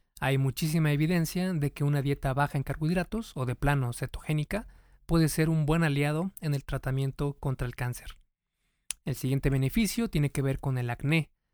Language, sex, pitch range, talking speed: Spanish, male, 135-160 Hz, 175 wpm